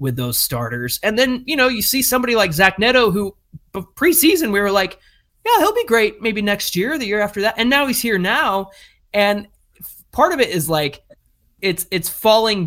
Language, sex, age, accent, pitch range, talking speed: English, male, 20-39, American, 140-200 Hz, 210 wpm